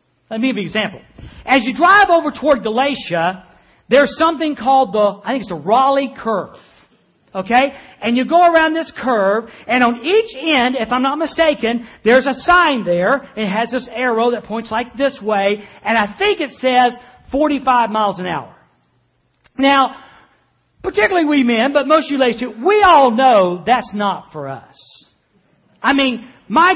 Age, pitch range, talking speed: 50-69, 215-295 Hz, 175 wpm